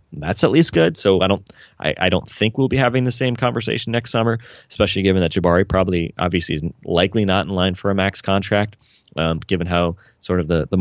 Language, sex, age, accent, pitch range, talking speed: English, male, 20-39, American, 80-100 Hz, 230 wpm